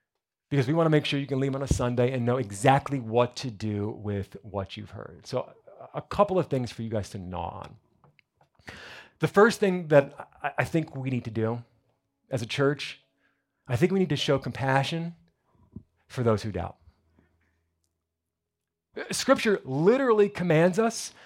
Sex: male